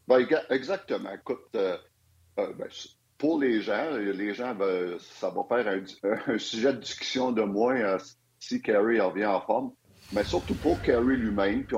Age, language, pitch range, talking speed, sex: 50-69, French, 100-140 Hz, 170 wpm, male